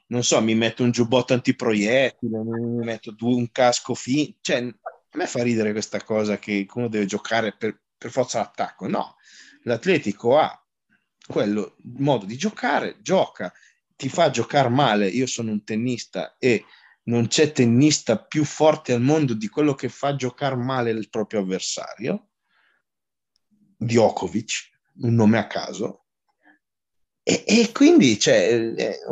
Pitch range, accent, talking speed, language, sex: 115-155 Hz, native, 145 wpm, Italian, male